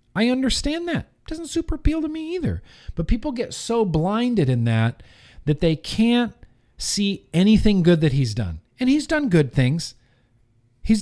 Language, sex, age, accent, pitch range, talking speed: English, male, 40-59, American, 135-205 Hz, 170 wpm